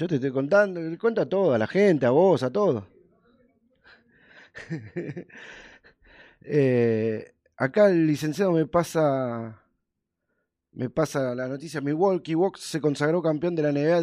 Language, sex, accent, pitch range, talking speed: Spanish, male, Argentinian, 130-180 Hz, 135 wpm